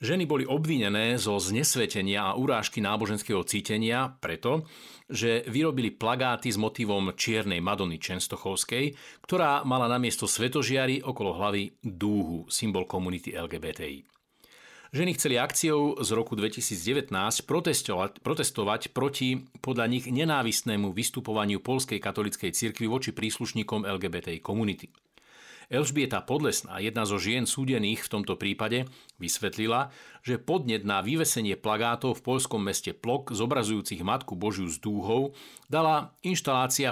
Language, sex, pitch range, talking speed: Slovak, male, 100-130 Hz, 120 wpm